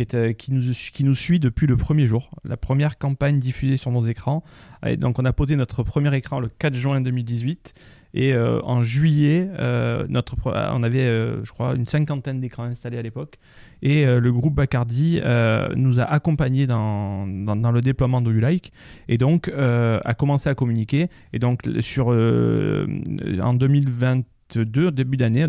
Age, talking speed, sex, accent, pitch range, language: 30-49, 185 wpm, male, French, 120-145 Hz, French